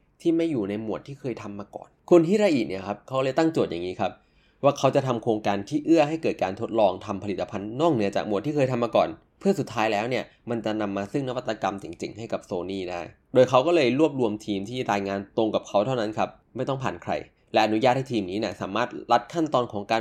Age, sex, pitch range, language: 20-39, male, 105-135 Hz, Thai